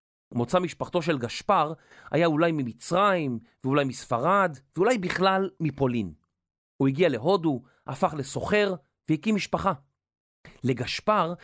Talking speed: 105 wpm